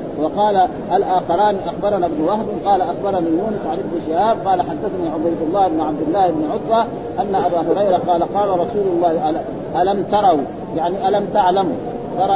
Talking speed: 160 wpm